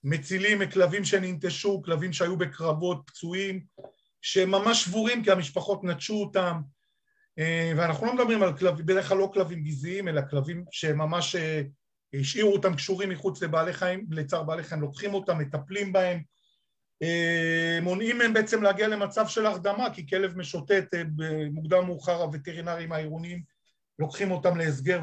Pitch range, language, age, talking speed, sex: 155-190 Hz, Hebrew, 40-59, 130 wpm, male